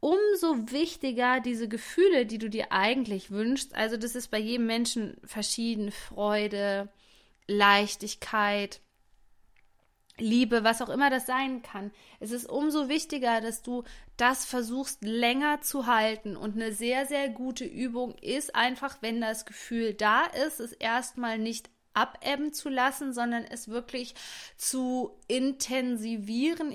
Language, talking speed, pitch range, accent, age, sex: German, 135 wpm, 210-250 Hz, German, 20-39, female